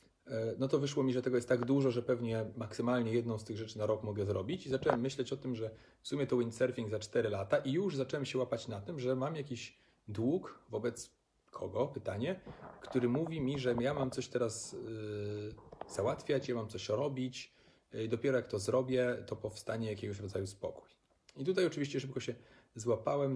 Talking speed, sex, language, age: 200 wpm, male, Polish, 30-49